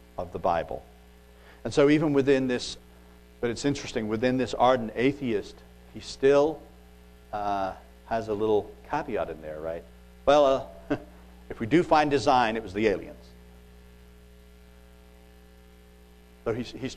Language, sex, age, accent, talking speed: English, male, 50-69, American, 140 wpm